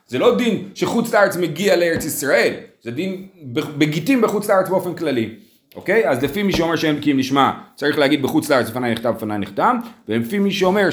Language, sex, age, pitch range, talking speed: Hebrew, male, 40-59, 125-185 Hz, 185 wpm